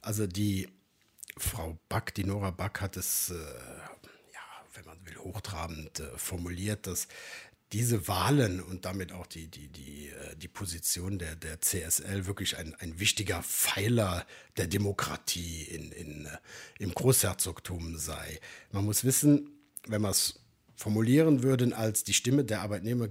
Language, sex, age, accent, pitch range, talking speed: German, male, 60-79, German, 90-120 Hz, 150 wpm